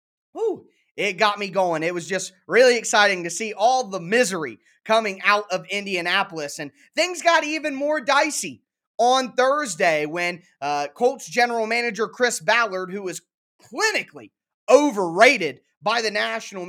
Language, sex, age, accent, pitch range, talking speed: English, male, 20-39, American, 185-255 Hz, 145 wpm